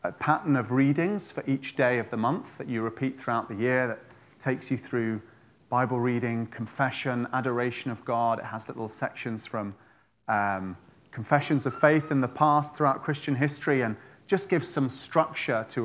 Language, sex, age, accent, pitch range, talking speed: English, male, 30-49, British, 115-140 Hz, 180 wpm